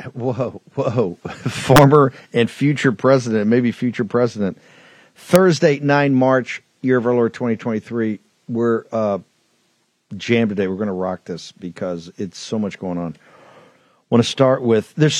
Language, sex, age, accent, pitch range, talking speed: English, male, 50-69, American, 105-135 Hz, 145 wpm